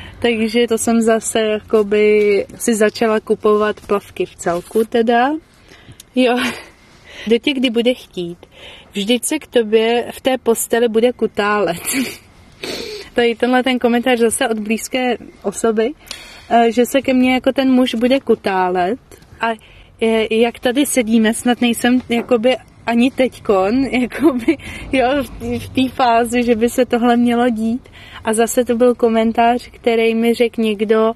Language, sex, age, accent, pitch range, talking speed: Czech, female, 30-49, native, 215-245 Hz, 135 wpm